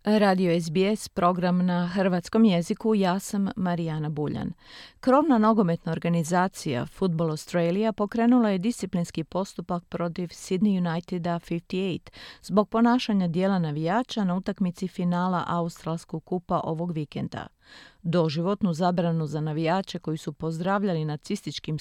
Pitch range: 170-205 Hz